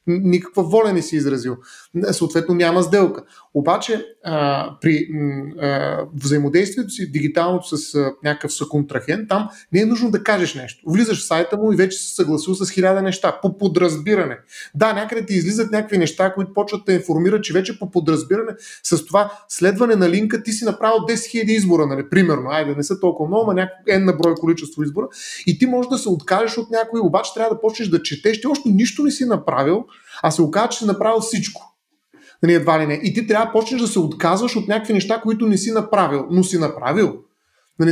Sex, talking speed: male, 205 wpm